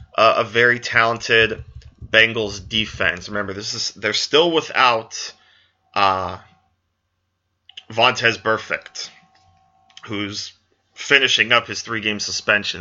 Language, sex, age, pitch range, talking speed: English, male, 30-49, 95-110 Hz, 100 wpm